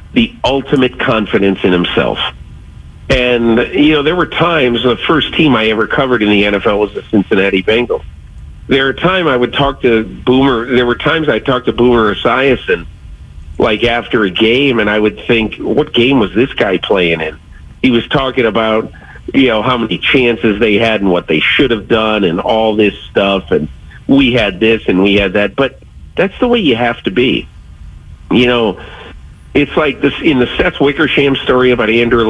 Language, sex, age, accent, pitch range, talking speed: English, male, 50-69, American, 95-125 Hz, 195 wpm